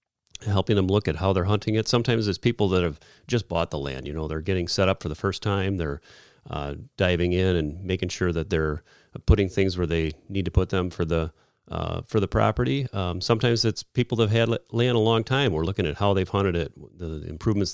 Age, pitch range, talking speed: 40-59, 85-100 Hz, 235 wpm